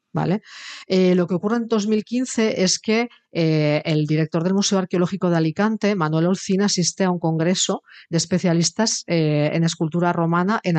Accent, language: Spanish, Spanish